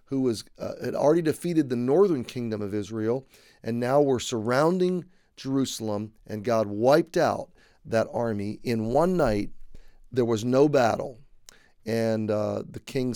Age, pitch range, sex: 40-59, 110-135 Hz, male